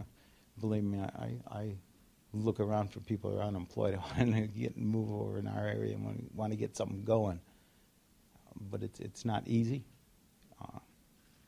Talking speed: 165 wpm